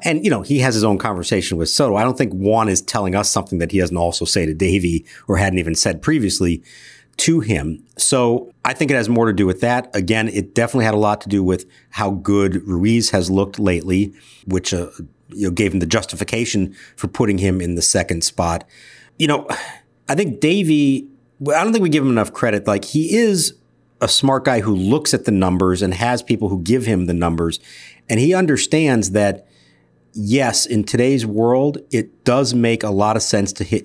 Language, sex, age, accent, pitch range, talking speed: English, male, 50-69, American, 95-135 Hz, 210 wpm